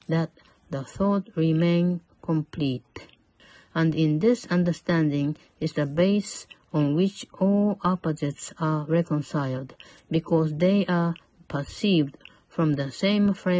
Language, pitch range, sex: Japanese, 150-185 Hz, female